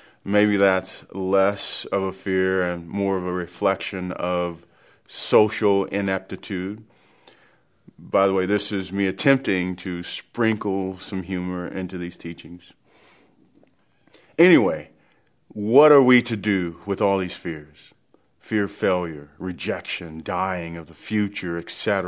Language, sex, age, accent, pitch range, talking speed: English, male, 40-59, American, 90-120 Hz, 130 wpm